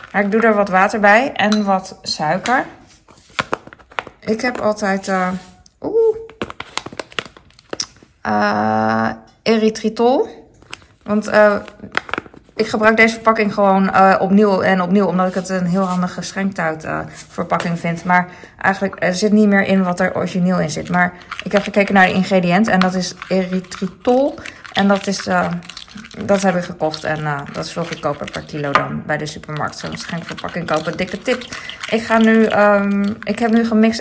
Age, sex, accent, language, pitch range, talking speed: 20-39, female, Dutch, Dutch, 175-215 Hz, 160 wpm